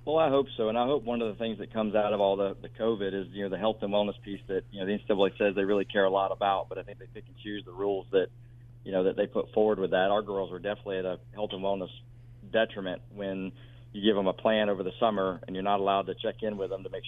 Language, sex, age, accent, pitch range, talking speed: English, male, 40-59, American, 100-120 Hz, 300 wpm